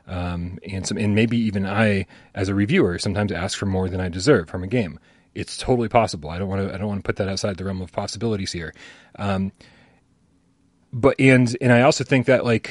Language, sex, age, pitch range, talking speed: English, male, 30-49, 95-120 Hz, 225 wpm